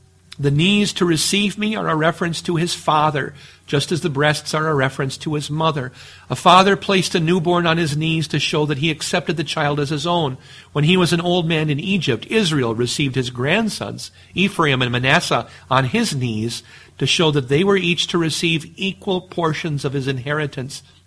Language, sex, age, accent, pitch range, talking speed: English, male, 50-69, American, 120-160 Hz, 200 wpm